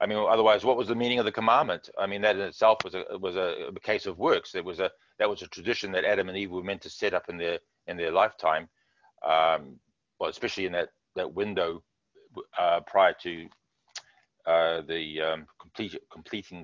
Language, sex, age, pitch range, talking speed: English, male, 40-59, 90-120 Hz, 210 wpm